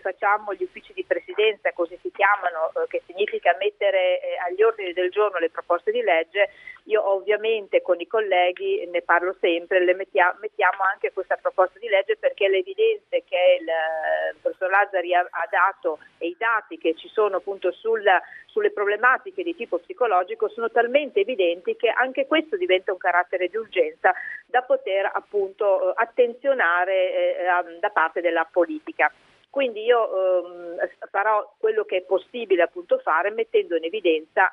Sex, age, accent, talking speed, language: female, 40-59, native, 150 wpm, Italian